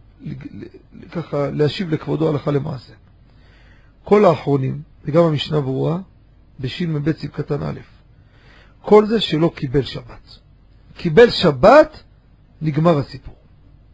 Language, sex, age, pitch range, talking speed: Hebrew, male, 50-69, 130-190 Hz, 105 wpm